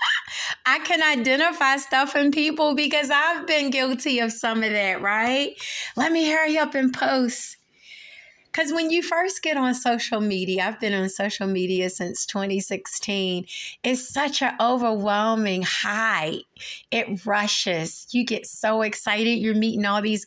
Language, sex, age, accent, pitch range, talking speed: English, female, 30-49, American, 195-260 Hz, 150 wpm